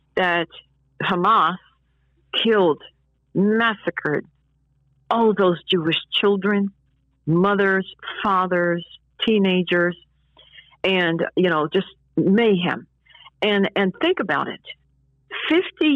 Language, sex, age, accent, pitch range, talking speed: English, female, 60-79, American, 165-220 Hz, 85 wpm